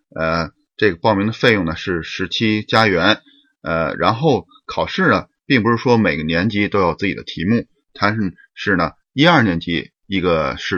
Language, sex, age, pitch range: Chinese, male, 30-49, 95-125 Hz